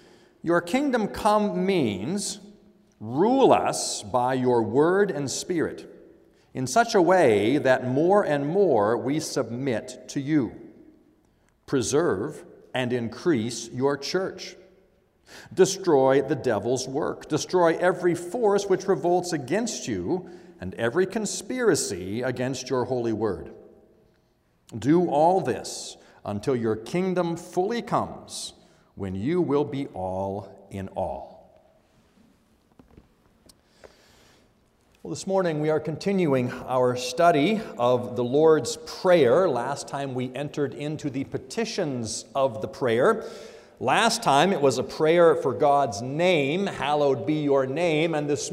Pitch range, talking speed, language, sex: 130-185 Hz, 120 wpm, English, male